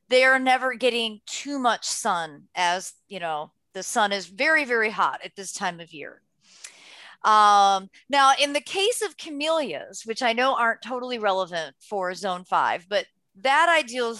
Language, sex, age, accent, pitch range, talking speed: English, female, 30-49, American, 205-275 Hz, 170 wpm